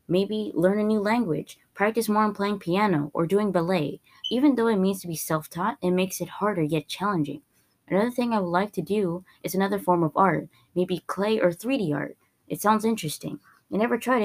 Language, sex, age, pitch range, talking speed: English, female, 20-39, 165-210 Hz, 205 wpm